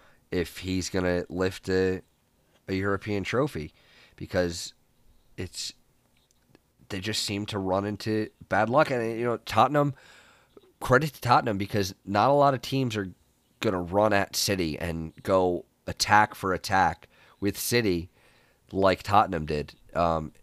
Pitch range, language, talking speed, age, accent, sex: 90-115 Hz, English, 145 wpm, 30-49, American, male